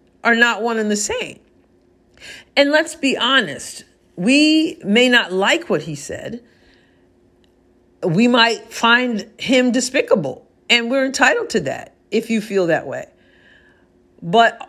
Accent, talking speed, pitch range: American, 135 wpm, 190-240 Hz